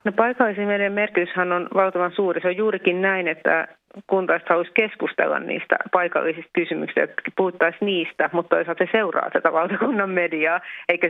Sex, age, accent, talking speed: female, 30-49, native, 155 wpm